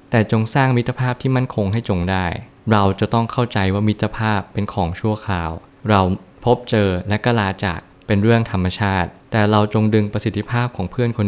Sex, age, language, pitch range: male, 20-39, Thai, 100-120 Hz